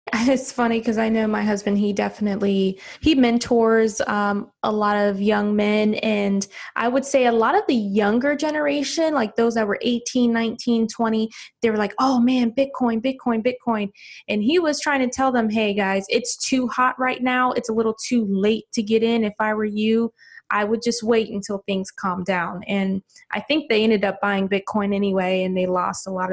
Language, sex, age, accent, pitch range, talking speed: English, female, 20-39, American, 205-255 Hz, 205 wpm